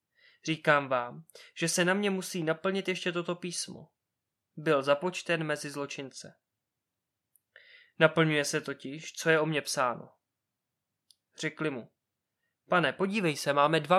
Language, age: Czech, 20-39